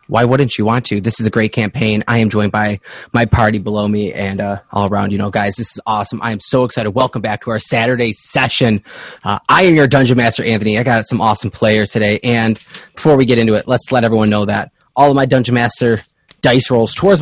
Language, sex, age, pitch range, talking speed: English, male, 20-39, 110-130 Hz, 245 wpm